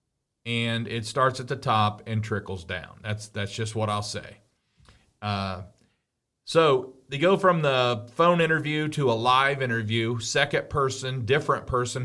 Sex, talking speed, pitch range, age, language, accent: male, 155 wpm, 110-130 Hz, 40-59, English, American